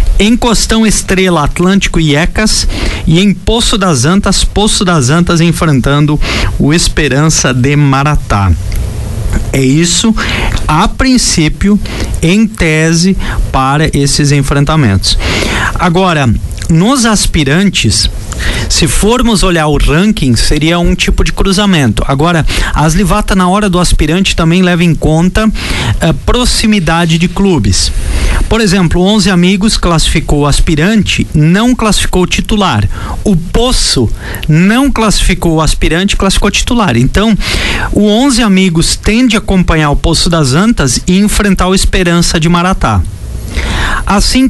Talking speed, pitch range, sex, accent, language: 125 wpm, 140-195 Hz, male, Brazilian, Portuguese